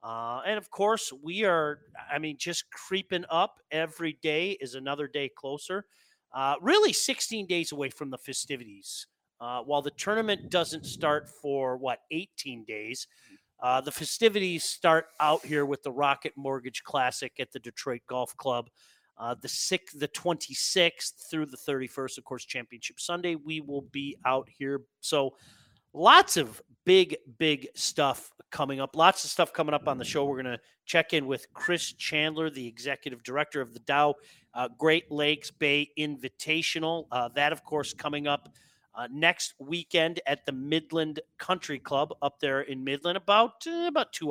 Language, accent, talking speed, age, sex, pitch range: English, American, 170 wpm, 30-49, male, 135-165 Hz